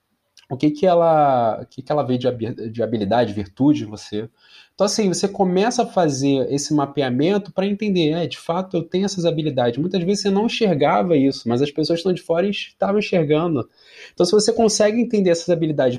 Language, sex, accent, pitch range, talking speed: Portuguese, male, Brazilian, 125-190 Hz, 185 wpm